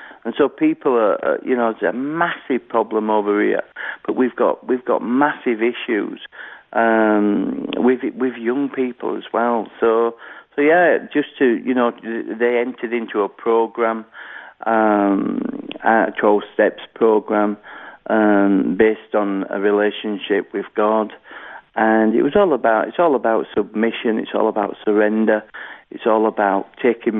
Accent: British